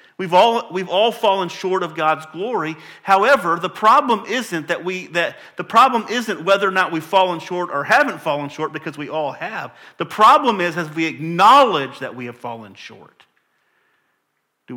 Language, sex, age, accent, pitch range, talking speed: English, male, 40-59, American, 135-165 Hz, 185 wpm